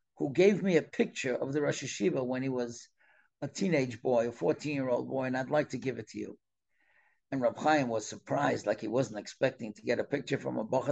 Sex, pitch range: male, 125-160 Hz